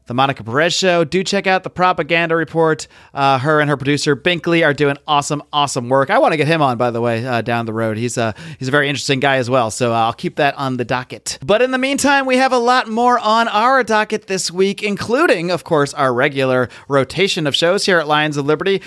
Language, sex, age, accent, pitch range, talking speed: English, male, 30-49, American, 140-180 Hz, 245 wpm